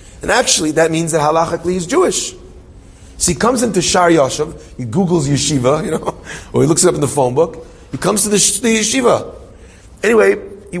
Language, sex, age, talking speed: English, male, 30-49, 195 wpm